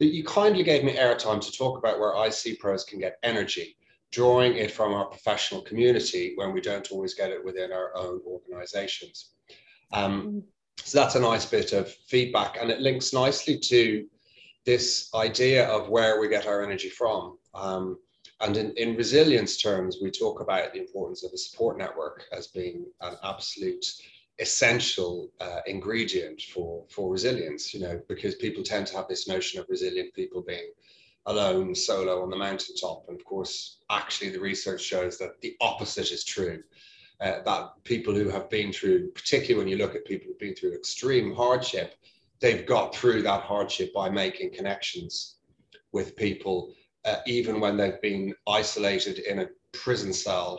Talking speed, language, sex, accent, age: 170 wpm, English, male, British, 30-49